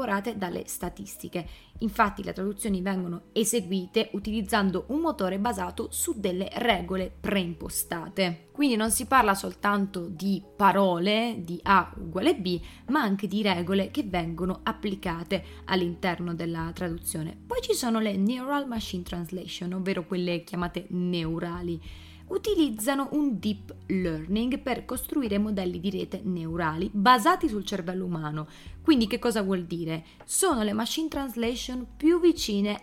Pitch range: 180-235 Hz